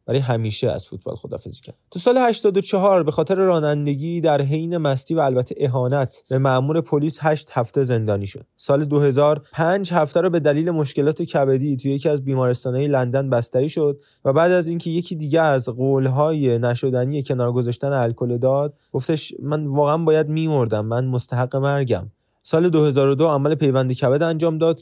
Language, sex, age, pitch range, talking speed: Persian, male, 20-39, 130-160 Hz, 160 wpm